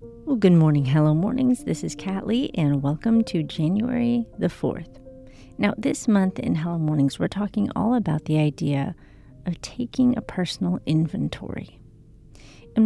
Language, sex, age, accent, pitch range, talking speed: English, female, 40-59, American, 115-180 Hz, 155 wpm